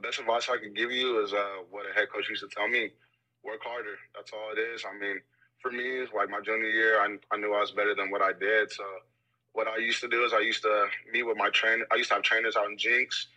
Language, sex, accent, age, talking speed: English, male, American, 20-39, 280 wpm